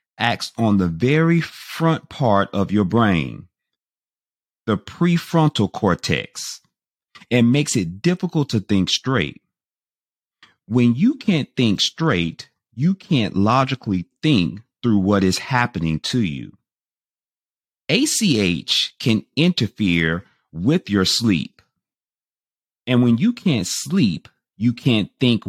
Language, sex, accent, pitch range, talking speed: English, male, American, 95-150 Hz, 115 wpm